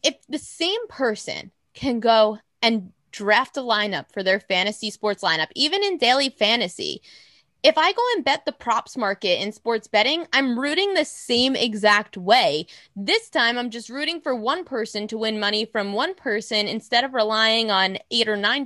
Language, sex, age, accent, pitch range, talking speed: English, female, 20-39, American, 175-240 Hz, 185 wpm